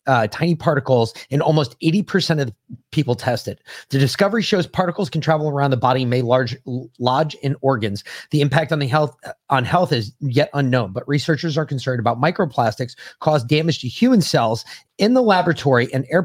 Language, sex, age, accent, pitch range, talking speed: English, male, 30-49, American, 125-165 Hz, 200 wpm